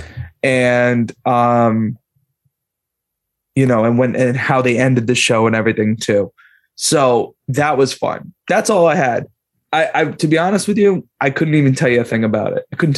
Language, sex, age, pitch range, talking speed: English, male, 20-39, 120-140 Hz, 190 wpm